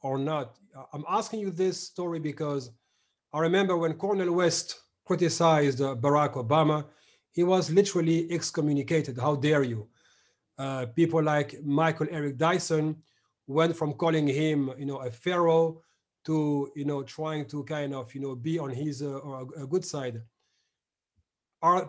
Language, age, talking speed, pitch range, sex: English, 40-59, 155 wpm, 145-170 Hz, male